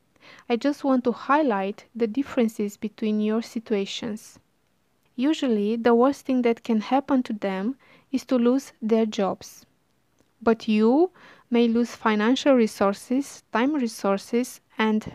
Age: 20-39